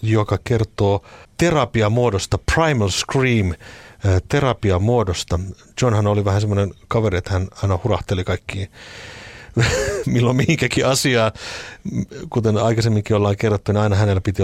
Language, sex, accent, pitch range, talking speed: Finnish, male, native, 95-120 Hz, 110 wpm